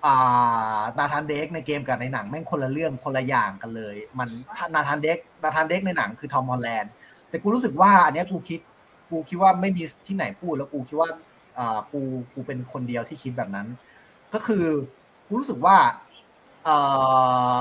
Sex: male